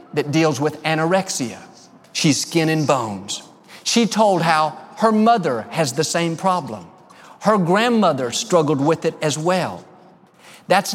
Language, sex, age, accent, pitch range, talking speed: English, male, 50-69, American, 150-215 Hz, 135 wpm